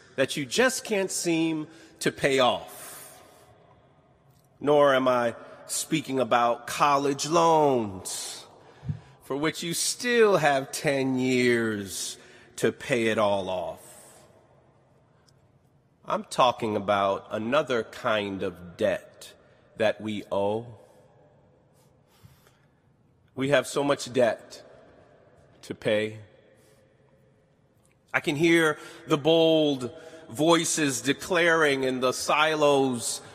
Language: English